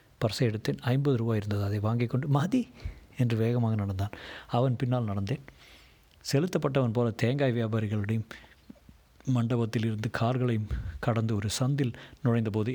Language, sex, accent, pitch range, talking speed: Tamil, male, native, 110-135 Hz, 120 wpm